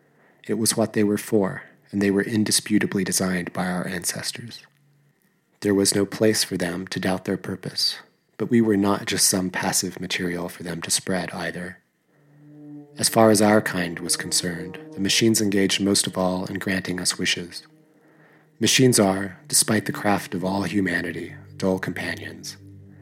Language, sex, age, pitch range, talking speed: English, male, 30-49, 90-110 Hz, 165 wpm